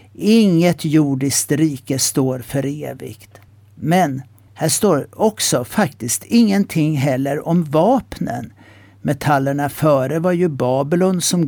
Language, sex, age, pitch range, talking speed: Swedish, male, 60-79, 130-170 Hz, 110 wpm